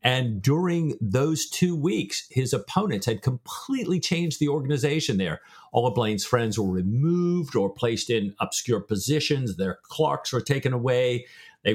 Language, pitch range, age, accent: English, 110-150 Hz, 50-69, American